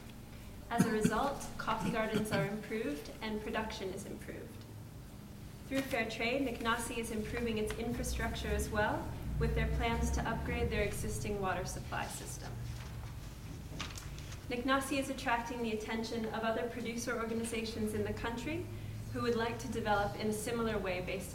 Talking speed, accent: 150 wpm, American